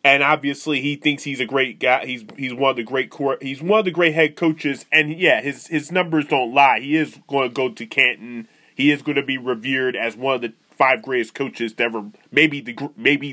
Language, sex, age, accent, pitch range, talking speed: English, male, 20-39, American, 125-150 Hz, 240 wpm